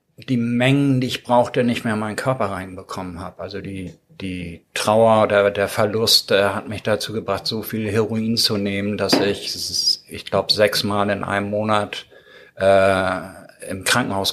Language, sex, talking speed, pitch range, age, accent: German, male, 170 wpm, 95-110 Hz, 50-69, German